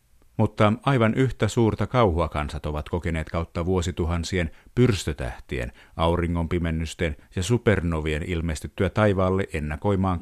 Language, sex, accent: Finnish, male, native